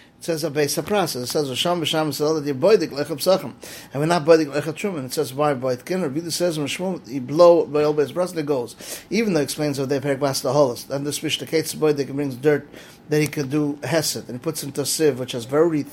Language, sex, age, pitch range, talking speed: English, male, 30-49, 145-175 Hz, 135 wpm